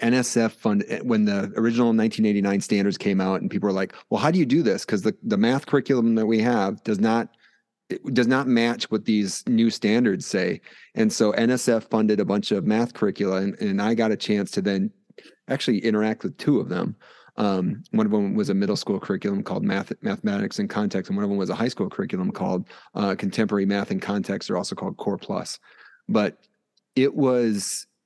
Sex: male